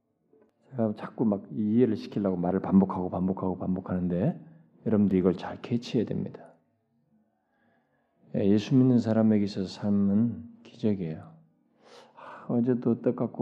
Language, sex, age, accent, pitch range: Korean, male, 40-59, native, 100-140 Hz